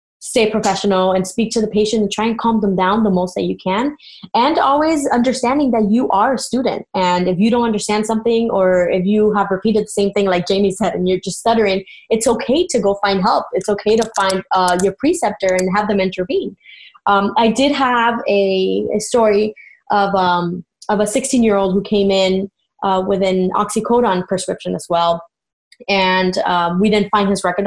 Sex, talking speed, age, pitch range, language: female, 200 wpm, 20-39, 190-230 Hz, English